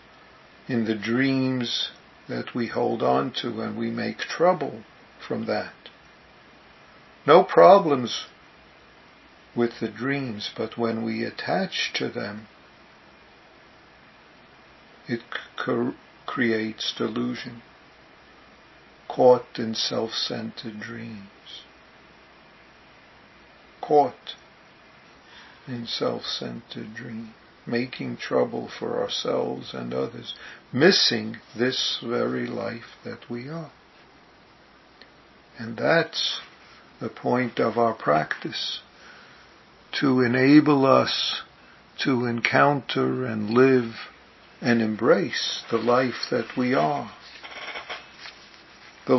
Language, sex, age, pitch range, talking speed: English, male, 60-79, 110-125 Hz, 85 wpm